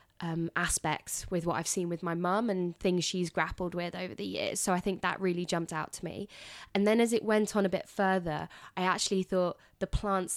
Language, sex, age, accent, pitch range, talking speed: English, female, 20-39, British, 165-190 Hz, 230 wpm